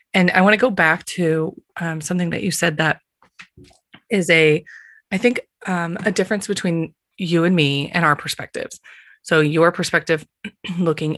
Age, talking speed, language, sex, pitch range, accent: 20-39, 165 wpm, English, female, 155-195 Hz, American